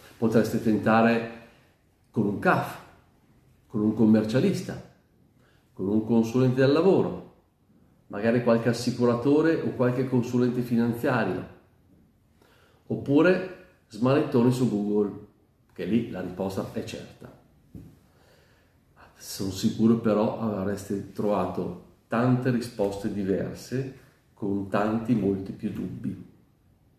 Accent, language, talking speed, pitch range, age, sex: native, Italian, 95 wpm, 100-125 Hz, 40-59, male